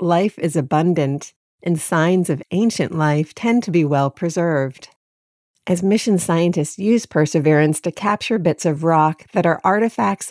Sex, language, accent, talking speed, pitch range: female, English, American, 150 wpm, 150-195 Hz